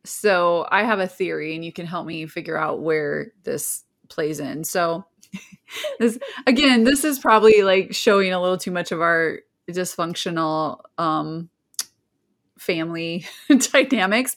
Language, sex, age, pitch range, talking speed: English, female, 20-39, 170-245 Hz, 140 wpm